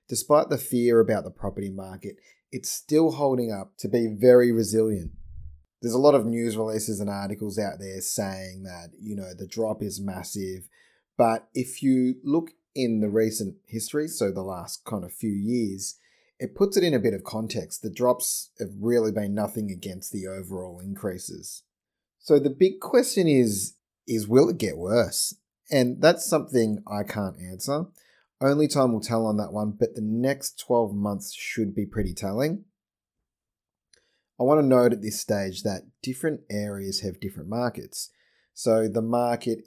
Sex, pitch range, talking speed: male, 100-125 Hz, 170 wpm